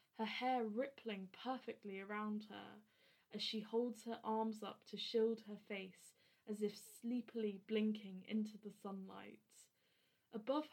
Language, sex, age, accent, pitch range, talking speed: English, female, 20-39, British, 210-235 Hz, 135 wpm